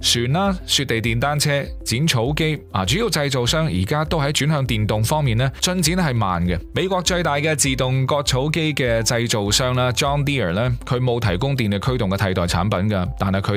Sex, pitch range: male, 95-135 Hz